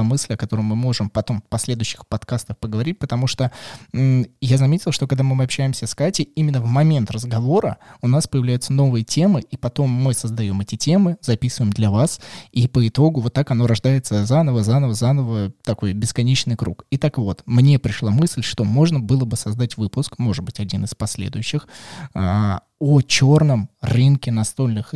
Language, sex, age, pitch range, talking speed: Russian, male, 20-39, 110-135 Hz, 175 wpm